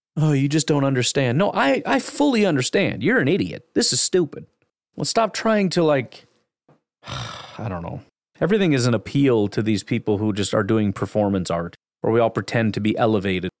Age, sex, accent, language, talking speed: 30-49, male, American, English, 195 wpm